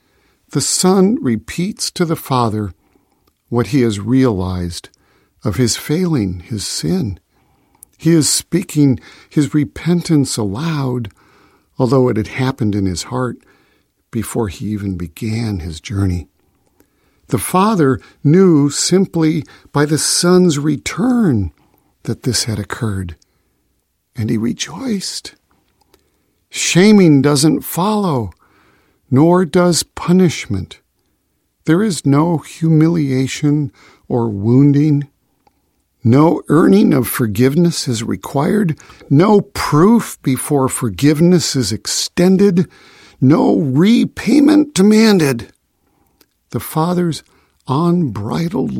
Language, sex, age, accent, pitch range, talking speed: English, male, 50-69, American, 110-170 Hz, 95 wpm